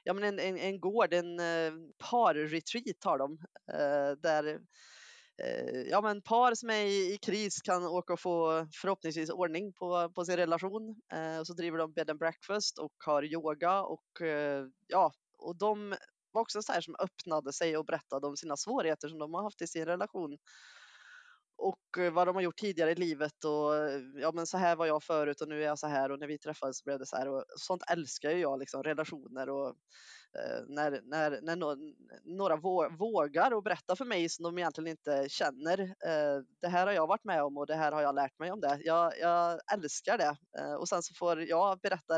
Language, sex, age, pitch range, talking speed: Swedish, female, 20-39, 150-185 Hz, 200 wpm